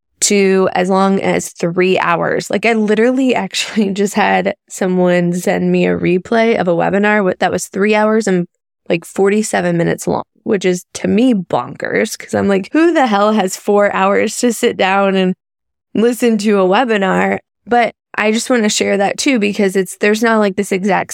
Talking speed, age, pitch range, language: 185 wpm, 10-29, 180-225 Hz, English